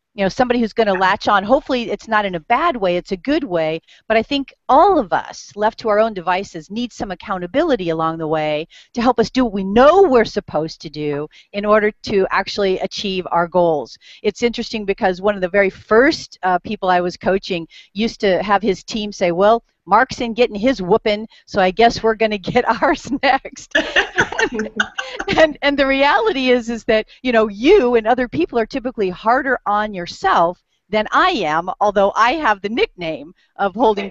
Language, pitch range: English, 190-250 Hz